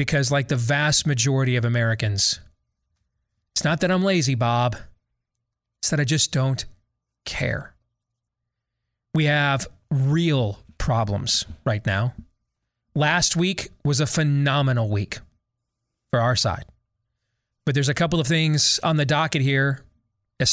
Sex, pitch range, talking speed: male, 115-140 Hz, 130 wpm